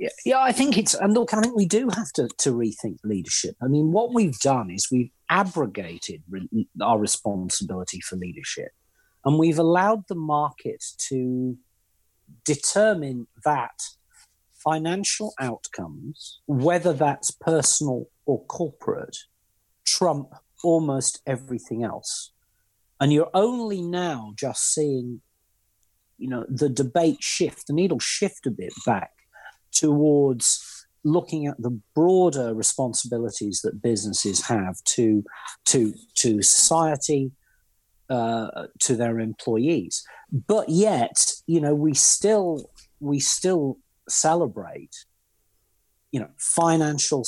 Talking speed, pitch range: 120 wpm, 120-175 Hz